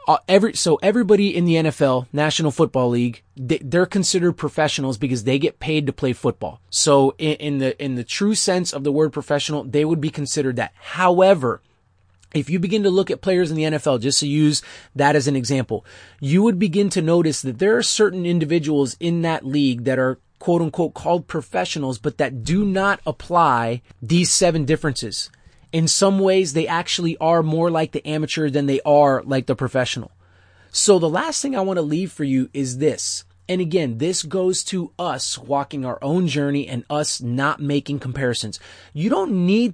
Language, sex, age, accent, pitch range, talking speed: English, male, 30-49, American, 130-170 Hz, 195 wpm